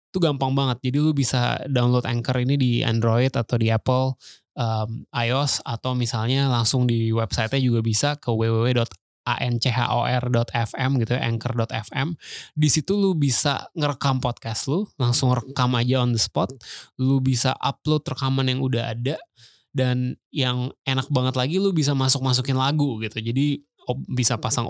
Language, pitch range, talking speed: Indonesian, 120-140 Hz, 145 wpm